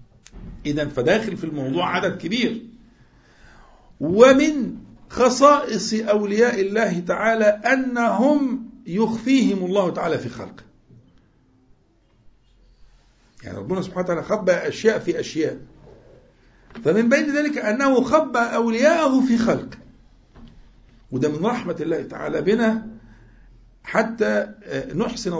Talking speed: 95 wpm